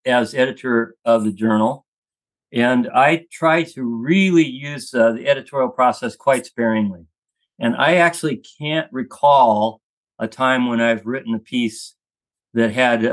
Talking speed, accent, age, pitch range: 140 wpm, American, 50-69, 115-150 Hz